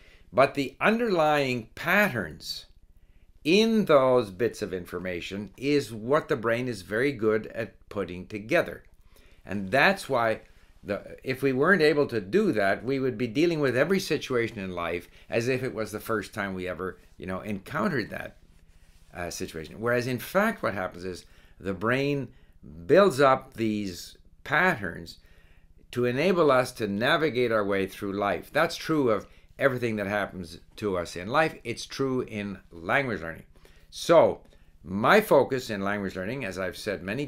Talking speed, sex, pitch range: 160 wpm, male, 90-135 Hz